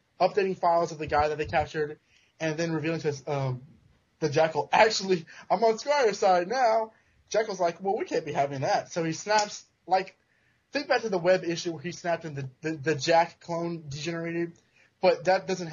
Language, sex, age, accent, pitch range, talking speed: English, male, 20-39, American, 150-215 Hz, 200 wpm